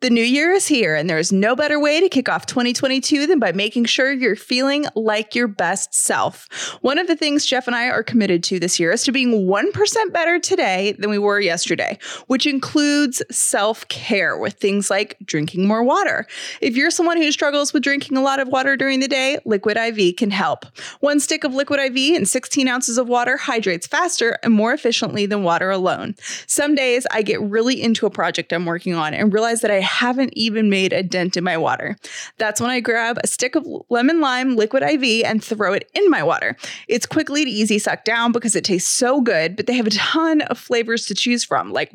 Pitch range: 210-285 Hz